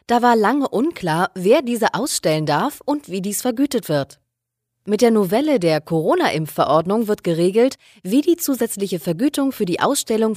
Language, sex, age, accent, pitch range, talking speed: German, female, 20-39, German, 160-245 Hz, 155 wpm